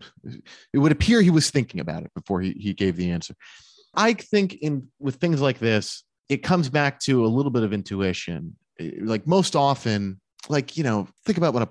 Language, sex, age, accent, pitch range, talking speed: English, male, 30-49, American, 105-165 Hz, 205 wpm